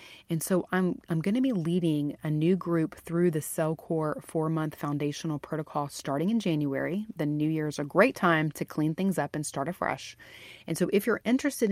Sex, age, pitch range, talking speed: female, 30-49, 150-175 Hz, 200 wpm